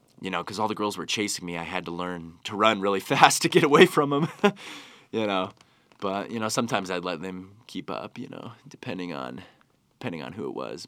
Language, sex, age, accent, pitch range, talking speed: English, male, 20-39, American, 90-110 Hz, 230 wpm